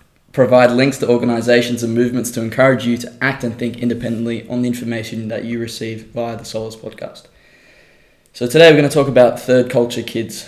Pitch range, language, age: 115-120 Hz, English, 10-29